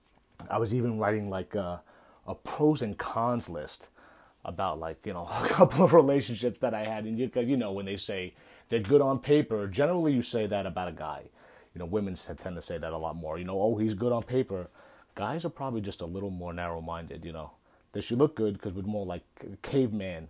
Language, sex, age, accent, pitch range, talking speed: English, male, 30-49, American, 95-130 Hz, 225 wpm